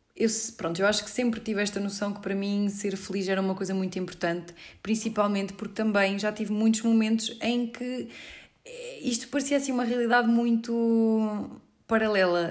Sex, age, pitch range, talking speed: female, 20-39, 185-220 Hz, 160 wpm